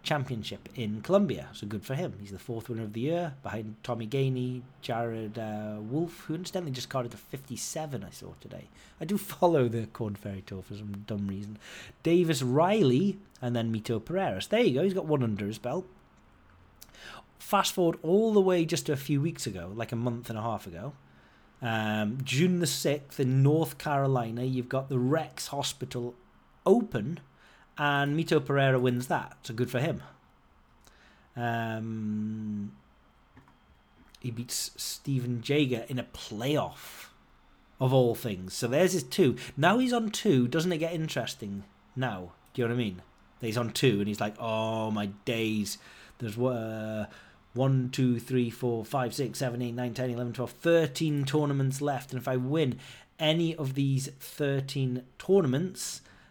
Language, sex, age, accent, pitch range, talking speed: English, male, 30-49, British, 110-145 Hz, 170 wpm